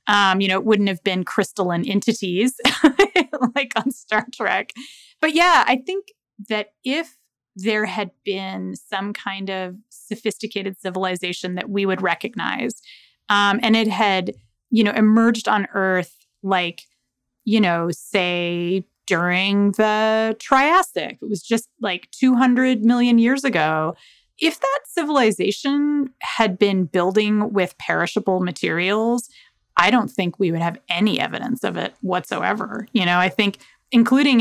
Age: 30-49